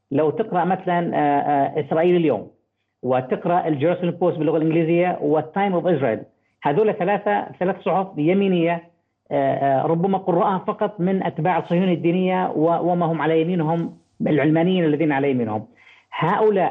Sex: female